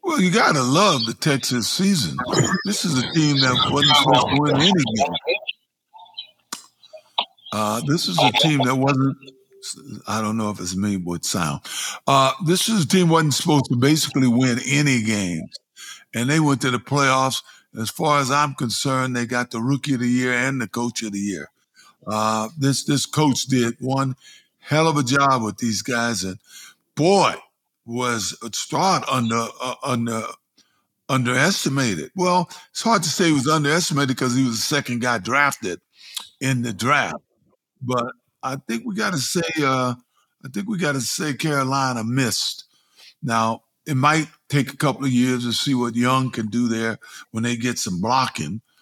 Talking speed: 175 wpm